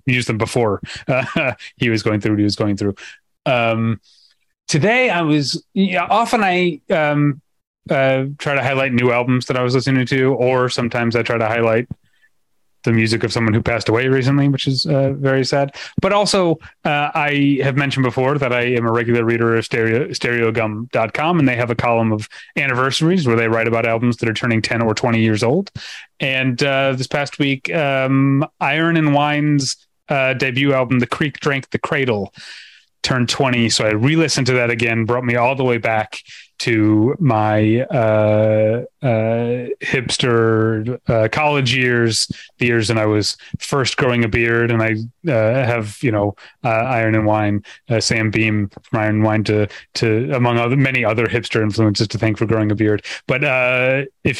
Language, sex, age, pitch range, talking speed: English, male, 30-49, 110-135 Hz, 185 wpm